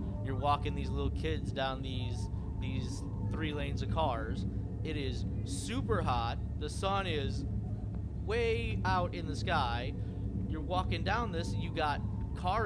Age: 30-49